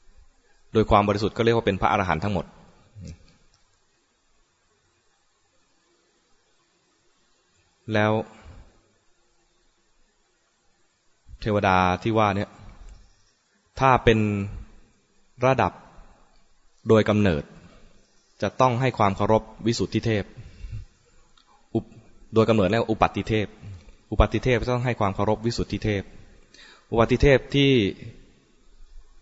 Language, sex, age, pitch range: English, male, 20-39, 95-115 Hz